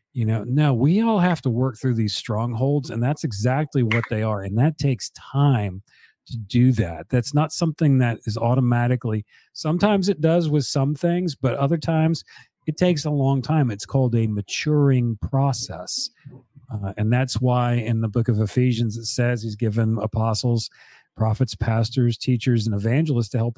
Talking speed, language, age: 180 wpm, English, 40-59